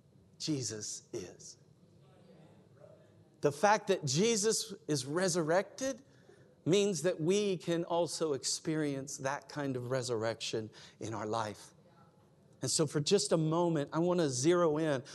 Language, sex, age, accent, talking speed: English, male, 50-69, American, 125 wpm